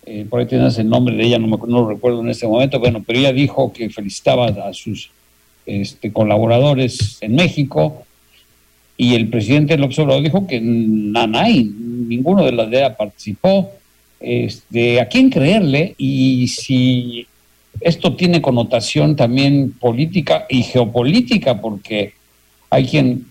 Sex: male